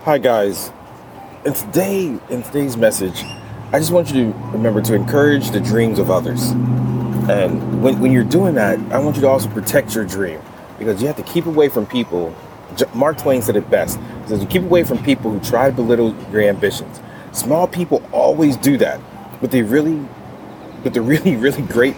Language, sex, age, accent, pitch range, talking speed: English, male, 30-49, American, 115-160 Hz, 195 wpm